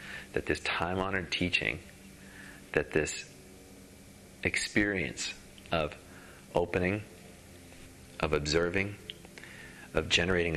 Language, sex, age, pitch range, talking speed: English, male, 40-59, 85-95 Hz, 75 wpm